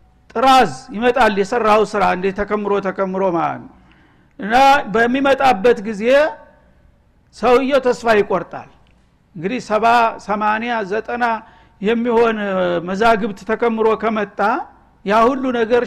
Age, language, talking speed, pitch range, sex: 60-79, Amharic, 70 wpm, 200-245 Hz, male